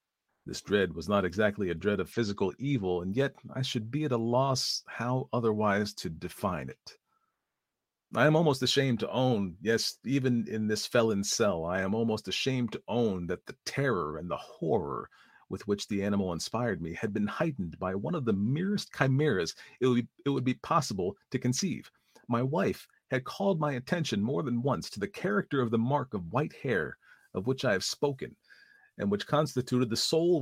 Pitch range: 100-130 Hz